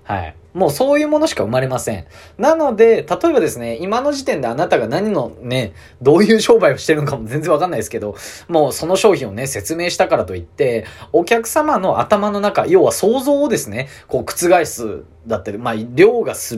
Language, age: Japanese, 20-39